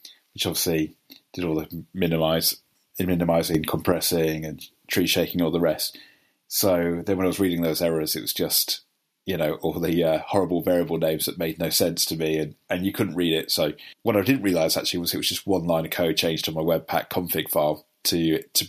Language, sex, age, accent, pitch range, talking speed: English, male, 30-49, British, 80-100 Hz, 215 wpm